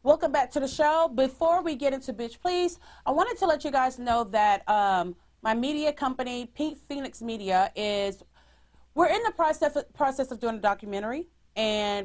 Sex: female